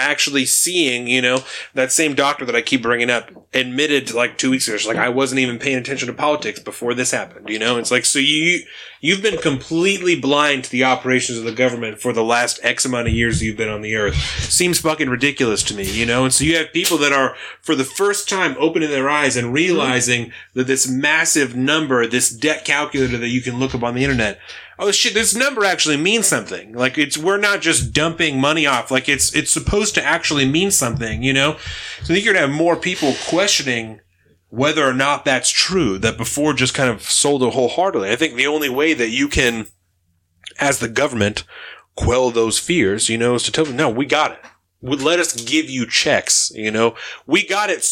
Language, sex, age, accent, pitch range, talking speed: English, male, 30-49, American, 120-155 Hz, 225 wpm